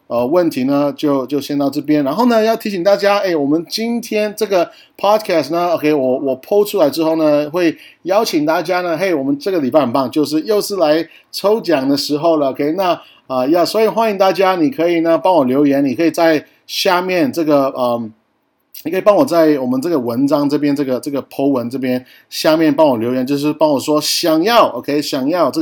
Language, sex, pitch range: Chinese, male, 130-195 Hz